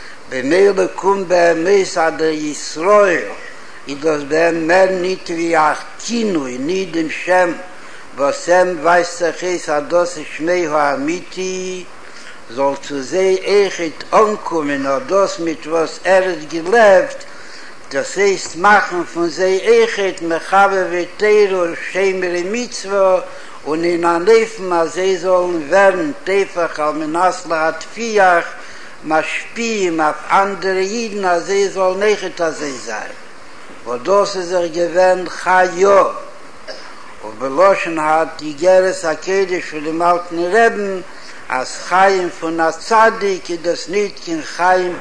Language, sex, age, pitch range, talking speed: Hebrew, male, 60-79, 160-195 Hz, 90 wpm